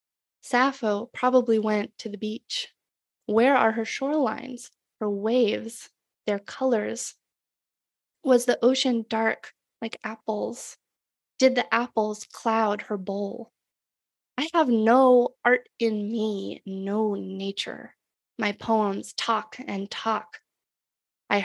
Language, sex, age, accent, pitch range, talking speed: English, female, 20-39, American, 210-245 Hz, 110 wpm